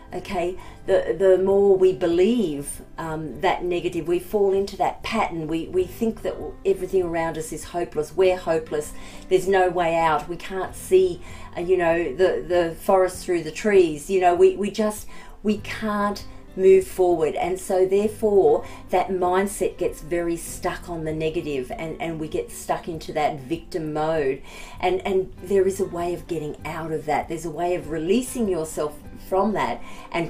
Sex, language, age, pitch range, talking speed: female, English, 40-59, 165-210 Hz, 180 wpm